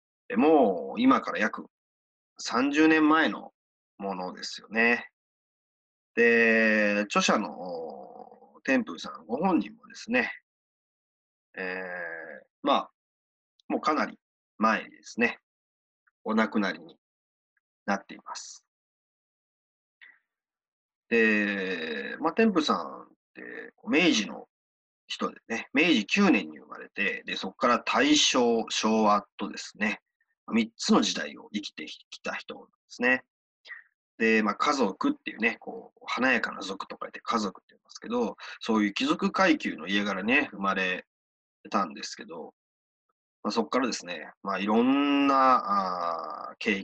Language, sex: Japanese, male